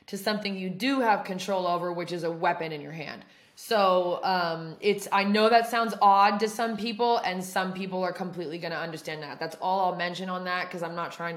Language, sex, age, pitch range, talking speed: English, female, 20-39, 170-200 Hz, 230 wpm